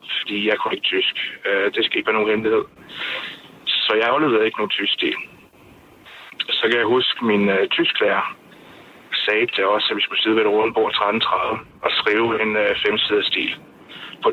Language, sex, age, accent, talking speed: Danish, male, 60-79, native, 180 wpm